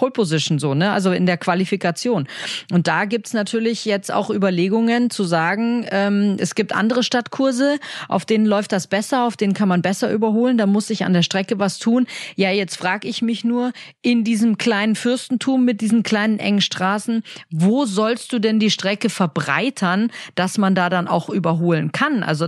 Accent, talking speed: German, 190 wpm